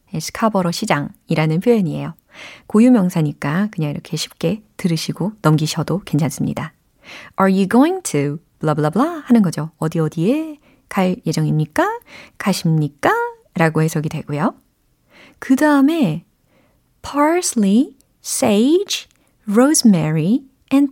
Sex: female